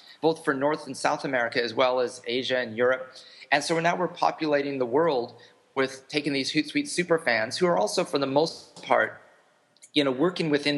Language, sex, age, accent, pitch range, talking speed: English, male, 30-49, American, 120-150 Hz, 205 wpm